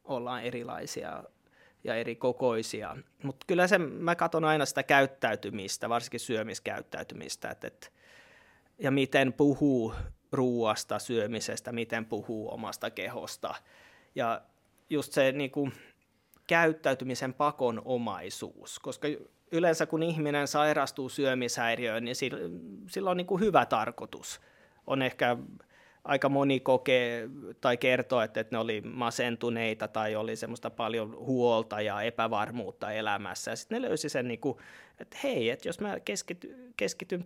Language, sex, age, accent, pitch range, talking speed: Finnish, male, 20-39, native, 115-150 Hz, 115 wpm